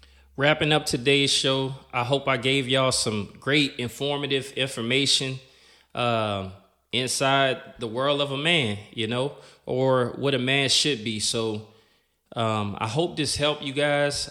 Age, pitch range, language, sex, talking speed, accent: 20-39, 115-145 Hz, English, male, 150 wpm, American